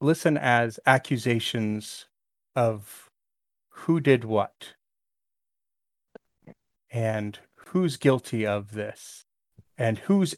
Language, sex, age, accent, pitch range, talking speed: English, male, 30-49, American, 110-135 Hz, 80 wpm